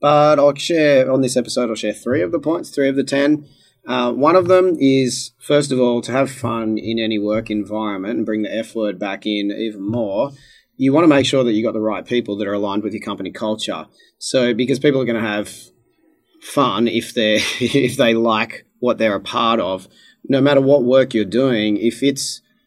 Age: 30-49